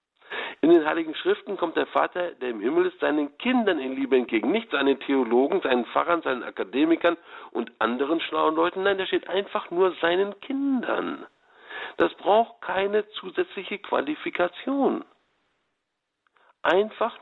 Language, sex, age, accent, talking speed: German, male, 60-79, German, 140 wpm